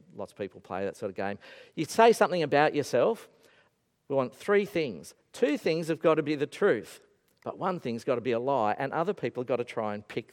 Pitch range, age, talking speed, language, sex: 120-190 Hz, 50-69, 245 wpm, English, male